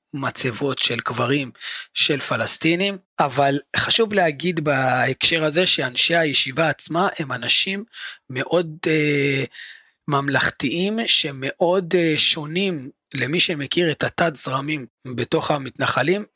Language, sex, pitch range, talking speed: Hebrew, male, 130-165 Hz, 105 wpm